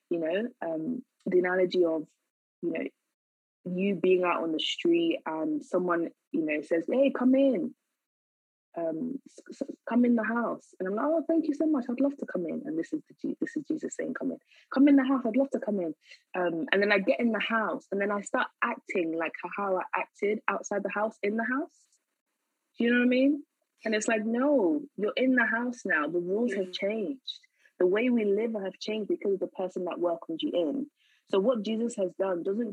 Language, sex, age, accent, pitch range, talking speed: English, female, 20-39, British, 185-290 Hz, 225 wpm